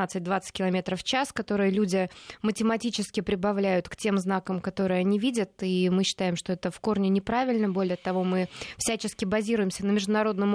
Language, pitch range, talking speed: Russian, 185-210 Hz, 165 wpm